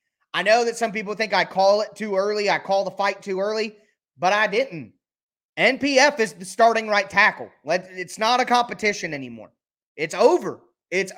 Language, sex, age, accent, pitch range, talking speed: English, male, 30-49, American, 180-225 Hz, 185 wpm